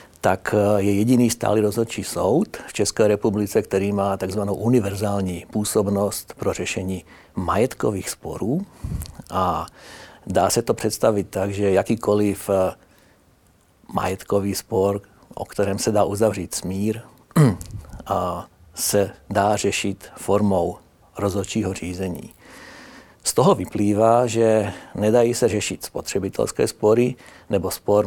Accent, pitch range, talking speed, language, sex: native, 95-110 Hz, 110 wpm, Czech, male